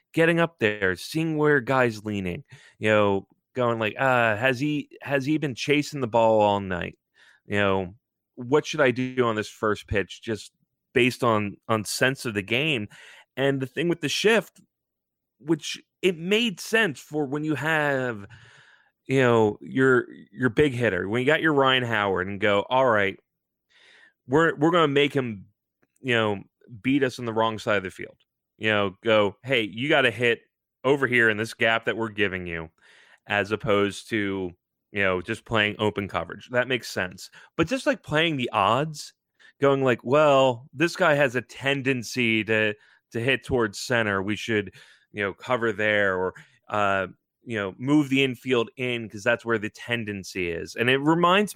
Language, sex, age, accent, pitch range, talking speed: English, male, 30-49, American, 105-135 Hz, 185 wpm